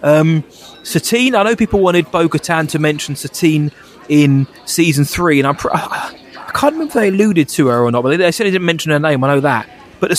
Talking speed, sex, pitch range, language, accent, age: 235 wpm, male, 125-155 Hz, English, British, 20-39